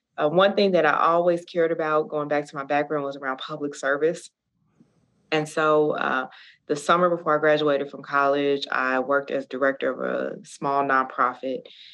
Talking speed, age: 175 wpm, 20-39